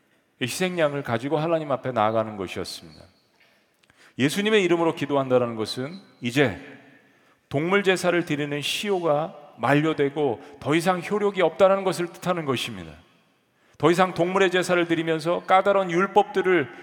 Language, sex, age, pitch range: Korean, male, 40-59, 145-190 Hz